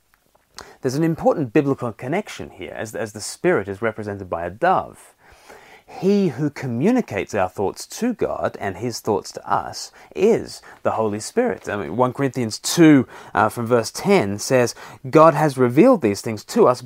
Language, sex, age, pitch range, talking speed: English, male, 30-49, 115-165 Hz, 170 wpm